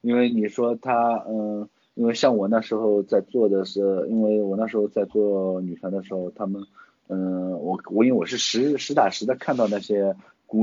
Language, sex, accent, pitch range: Chinese, male, native, 90-110 Hz